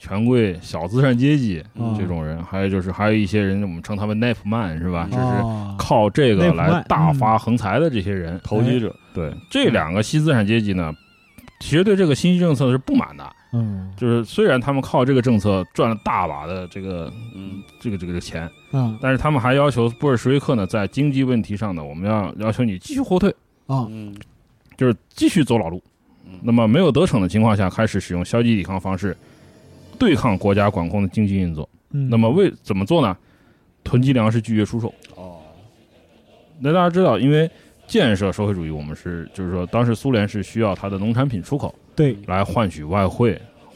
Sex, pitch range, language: male, 95-130 Hz, Chinese